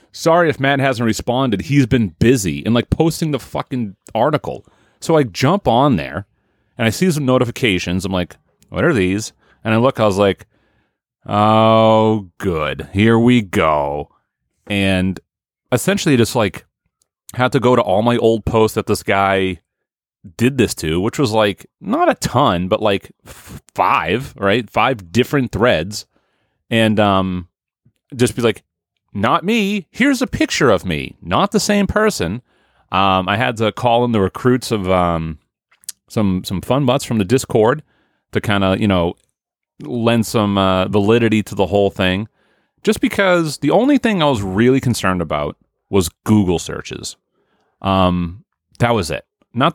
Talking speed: 165 wpm